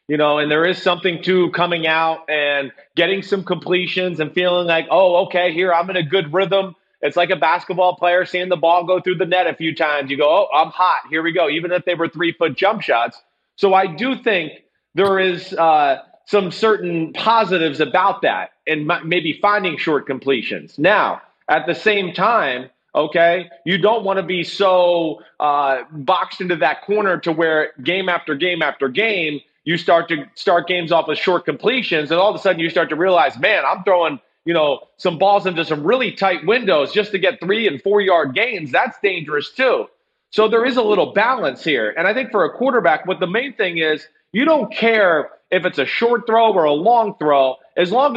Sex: male